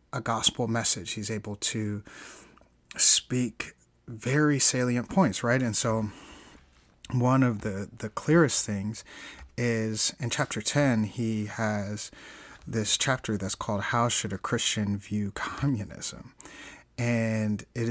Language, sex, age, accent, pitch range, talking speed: English, male, 30-49, American, 105-120 Hz, 125 wpm